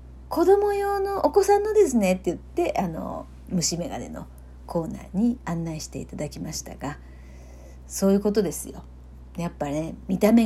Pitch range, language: 140-230 Hz, Japanese